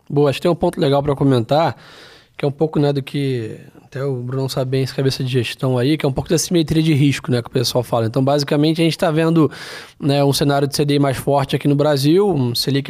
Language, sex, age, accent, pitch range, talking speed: Portuguese, male, 20-39, Brazilian, 140-165 Hz, 265 wpm